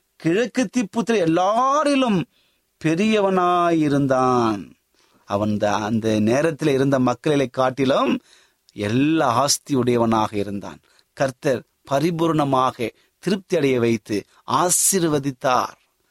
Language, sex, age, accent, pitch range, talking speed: Tamil, male, 30-49, native, 125-180 Hz, 70 wpm